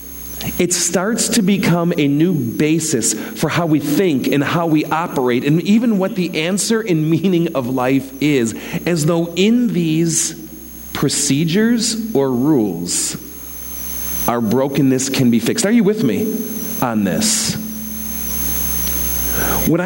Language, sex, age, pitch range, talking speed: English, male, 40-59, 120-180 Hz, 135 wpm